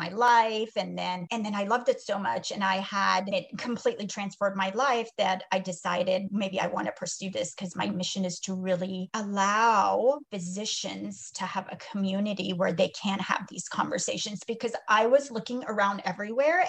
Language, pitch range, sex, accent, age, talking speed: English, 195-250 Hz, female, American, 30-49, 185 wpm